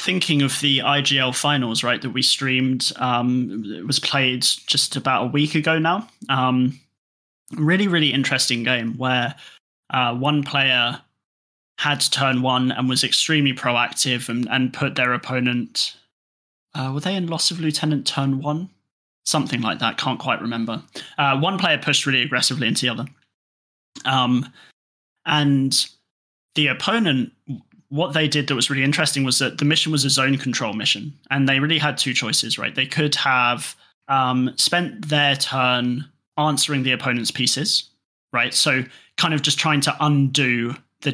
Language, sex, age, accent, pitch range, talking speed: English, male, 20-39, British, 125-150 Hz, 165 wpm